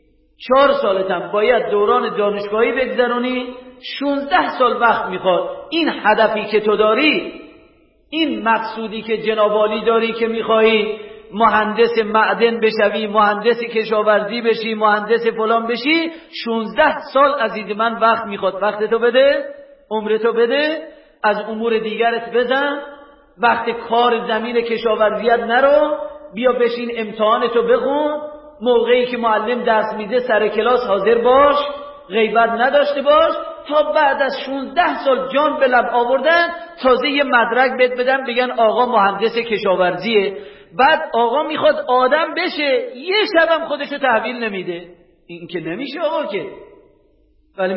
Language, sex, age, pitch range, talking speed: Persian, male, 40-59, 220-285 Hz, 125 wpm